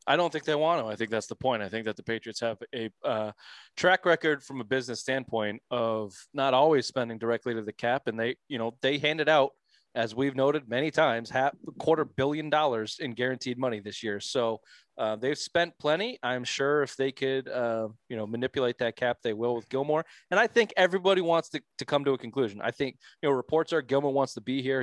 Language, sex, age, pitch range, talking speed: English, male, 20-39, 115-140 Hz, 235 wpm